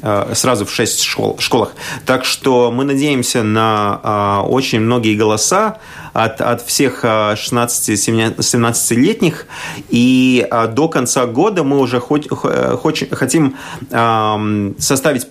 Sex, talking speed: male, 95 wpm